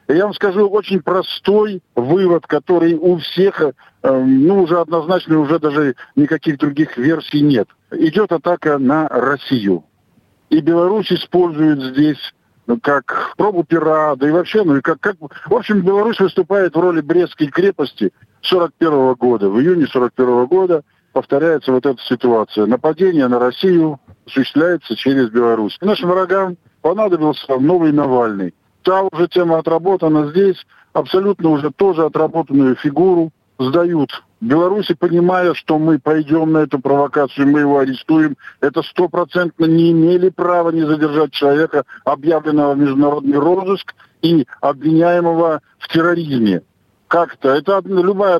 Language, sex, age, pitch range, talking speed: Russian, male, 50-69, 135-175 Hz, 135 wpm